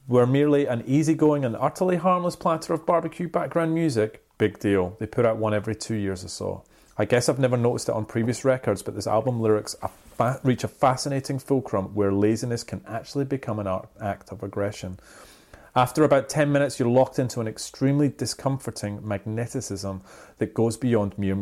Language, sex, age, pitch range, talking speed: English, male, 30-49, 100-135 Hz, 180 wpm